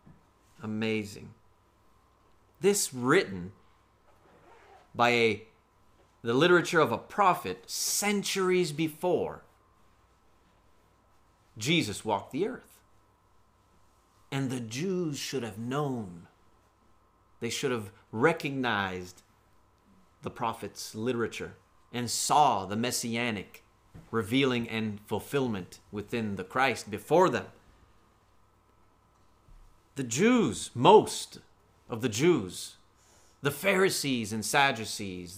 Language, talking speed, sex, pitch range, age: English, 85 wpm, male, 100-135 Hz, 30-49